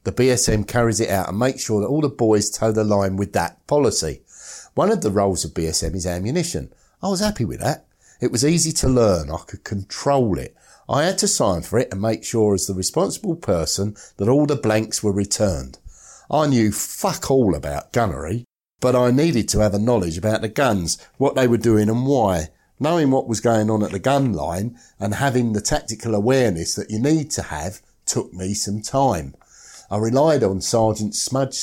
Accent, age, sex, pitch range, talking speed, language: British, 60-79, male, 100-130 Hz, 205 wpm, English